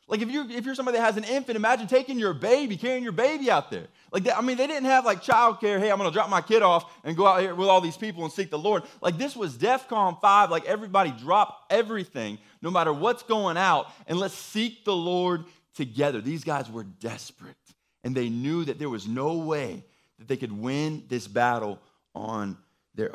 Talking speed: 230 wpm